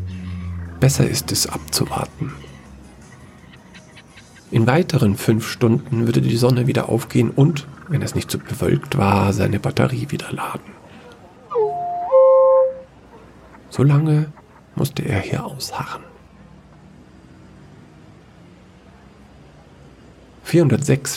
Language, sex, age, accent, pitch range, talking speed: German, male, 50-69, German, 110-140 Hz, 90 wpm